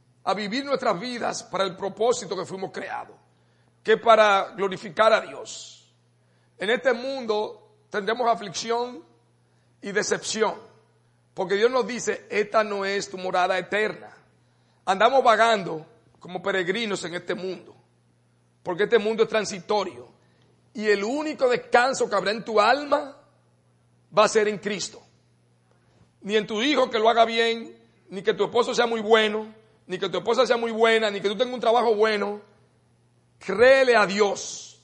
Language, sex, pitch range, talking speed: English, male, 180-240 Hz, 155 wpm